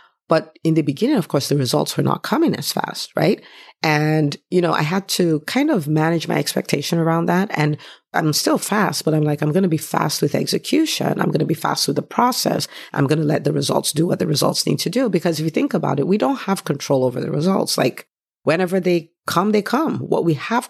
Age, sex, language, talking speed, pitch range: 50-69, female, English, 245 wpm, 145-185 Hz